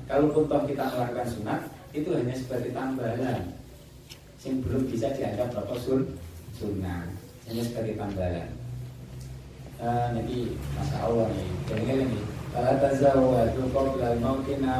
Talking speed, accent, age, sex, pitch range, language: 120 wpm, native, 30-49, male, 115-135 Hz, Indonesian